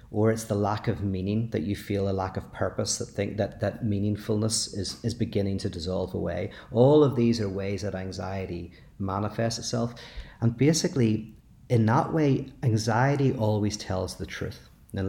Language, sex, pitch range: Danish, male, 100-120 Hz